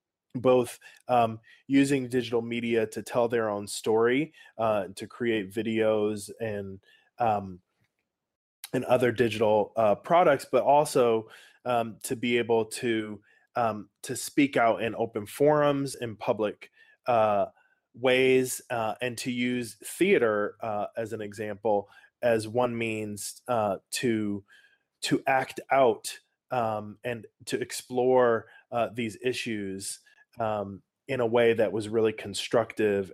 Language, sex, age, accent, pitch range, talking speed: English, male, 20-39, American, 105-125 Hz, 130 wpm